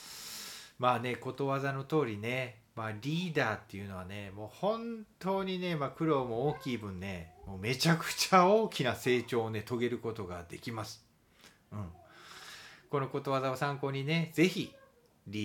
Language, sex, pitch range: Japanese, male, 110-165 Hz